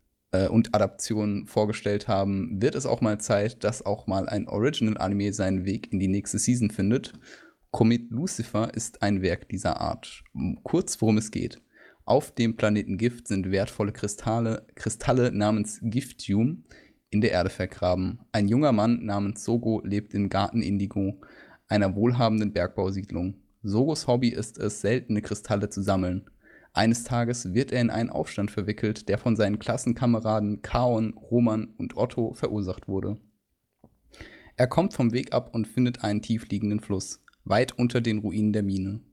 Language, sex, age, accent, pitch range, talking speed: German, male, 20-39, German, 100-120 Hz, 155 wpm